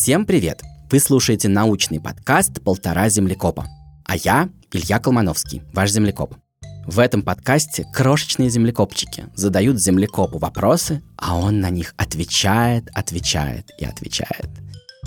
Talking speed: 120 wpm